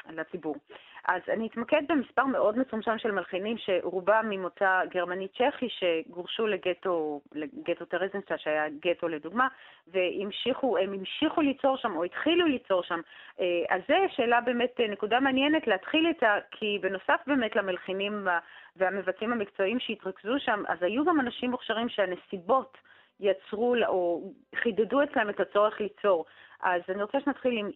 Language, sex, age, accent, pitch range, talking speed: Hebrew, female, 30-49, native, 185-240 Hz, 135 wpm